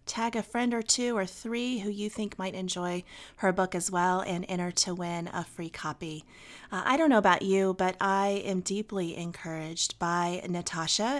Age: 30-49